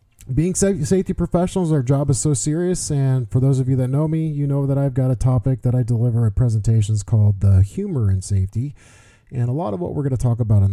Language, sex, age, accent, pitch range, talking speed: English, male, 40-59, American, 105-135 Hz, 245 wpm